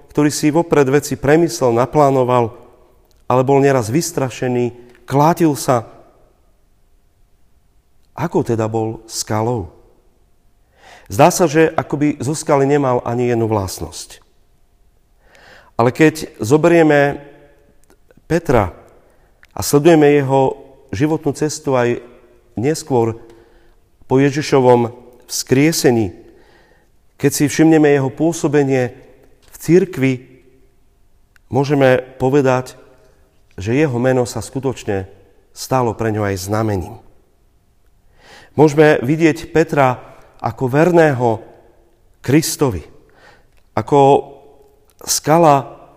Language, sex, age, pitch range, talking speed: Slovak, male, 40-59, 110-145 Hz, 85 wpm